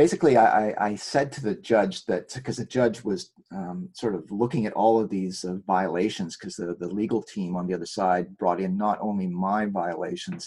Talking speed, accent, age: 210 wpm, American, 30-49